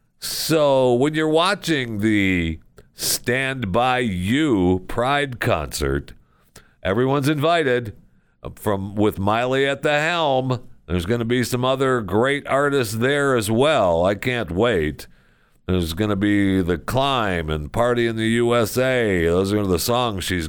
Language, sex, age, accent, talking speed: English, male, 50-69, American, 140 wpm